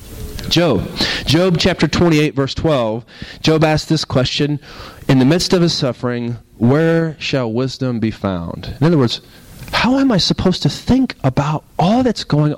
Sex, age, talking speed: male, 40-59, 160 wpm